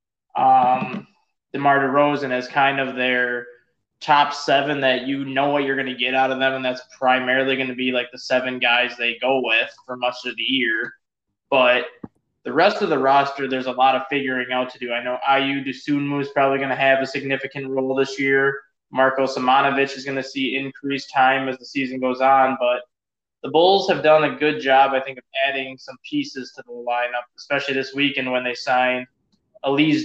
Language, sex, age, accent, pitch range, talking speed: English, male, 20-39, American, 130-140 Hz, 205 wpm